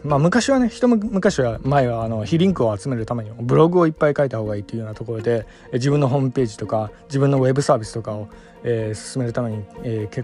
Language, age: Japanese, 20-39